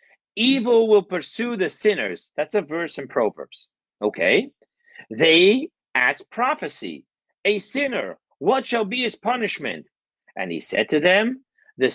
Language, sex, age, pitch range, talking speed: English, male, 50-69, 185-245 Hz, 135 wpm